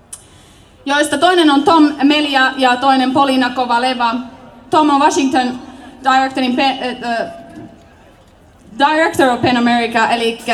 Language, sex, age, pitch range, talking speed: Finnish, female, 20-39, 215-265 Hz, 110 wpm